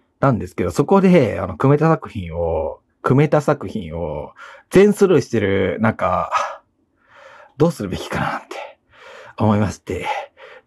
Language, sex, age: Japanese, male, 40-59